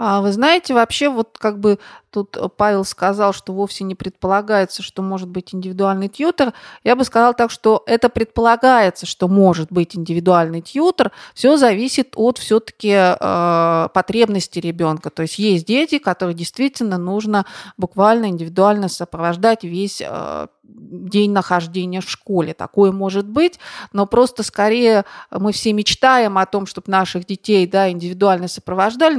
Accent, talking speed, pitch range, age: native, 140 wpm, 185-225 Hz, 30-49